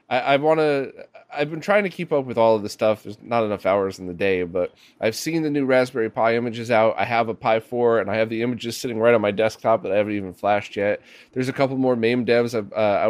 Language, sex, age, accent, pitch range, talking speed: English, male, 20-39, American, 105-135 Hz, 270 wpm